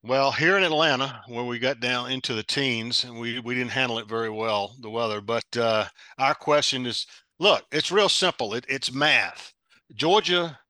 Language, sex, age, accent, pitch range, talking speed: English, male, 50-69, American, 115-140 Hz, 190 wpm